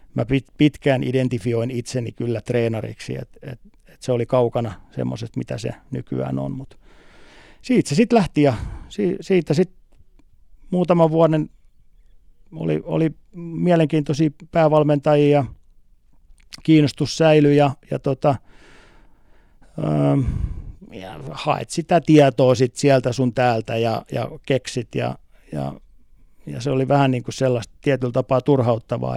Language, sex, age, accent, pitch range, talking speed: Finnish, male, 50-69, native, 120-150 Hz, 120 wpm